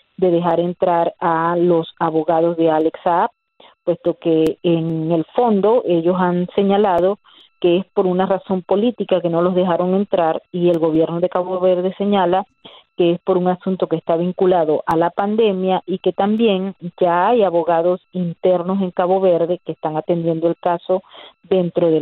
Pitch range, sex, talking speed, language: 170-195 Hz, female, 170 wpm, Spanish